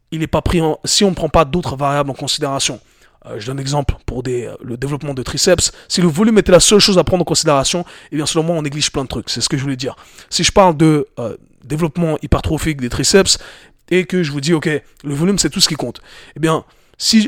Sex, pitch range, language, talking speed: male, 140-175 Hz, French, 265 wpm